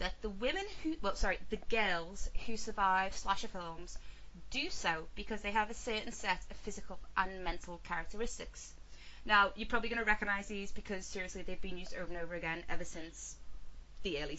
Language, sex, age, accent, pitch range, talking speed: English, female, 20-39, British, 185-235 Hz, 190 wpm